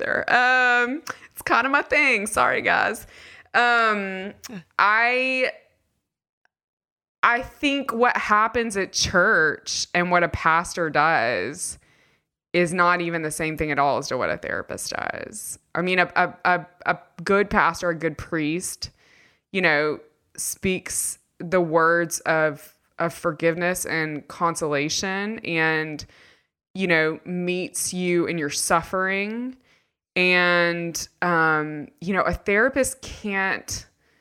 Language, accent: English, American